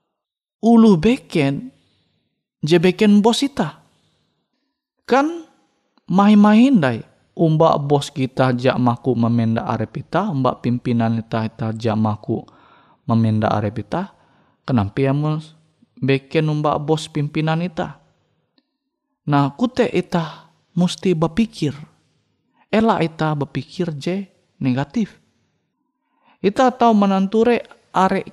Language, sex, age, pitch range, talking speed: Indonesian, male, 30-49, 140-205 Hz, 95 wpm